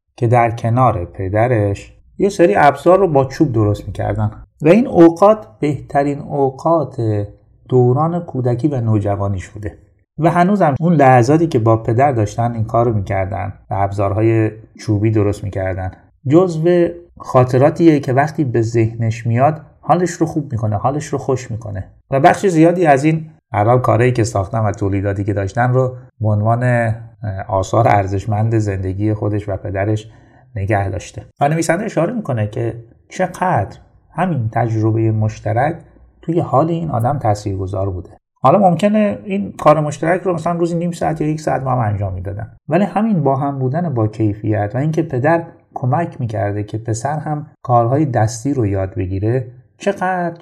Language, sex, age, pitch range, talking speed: Persian, male, 30-49, 105-155 Hz, 155 wpm